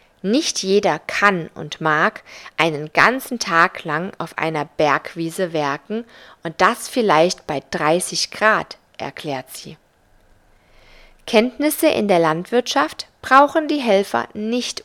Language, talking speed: German, 115 wpm